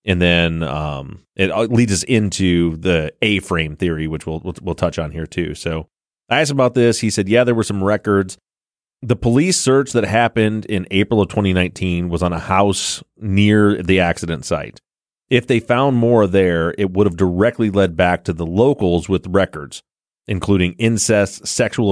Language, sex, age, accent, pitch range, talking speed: English, male, 30-49, American, 90-115 Hz, 185 wpm